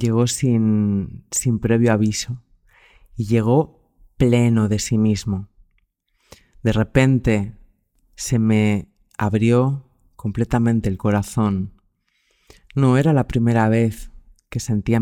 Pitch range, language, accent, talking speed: 95-120 Hz, Spanish, Spanish, 105 wpm